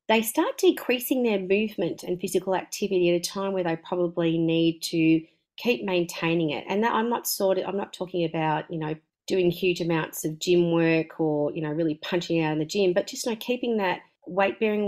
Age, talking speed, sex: 30-49, 220 wpm, female